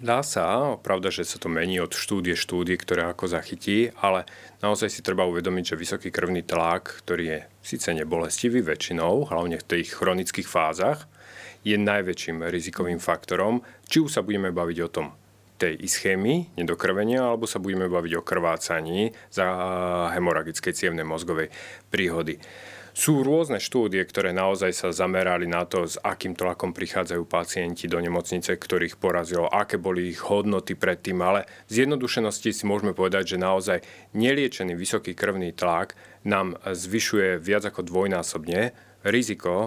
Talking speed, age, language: 150 wpm, 30-49, Slovak